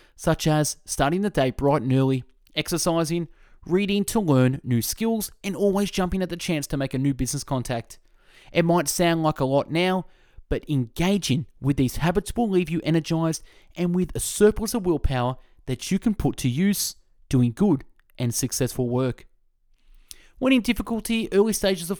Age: 20-39